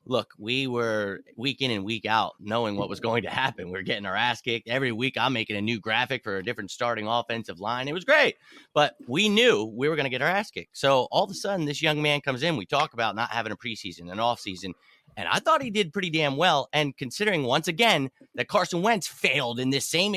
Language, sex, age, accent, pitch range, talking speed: English, male, 30-49, American, 115-165 Hz, 255 wpm